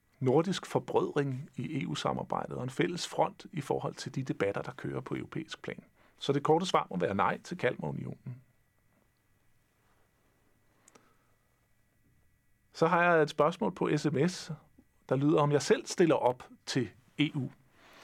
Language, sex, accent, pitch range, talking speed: Danish, male, native, 125-165 Hz, 145 wpm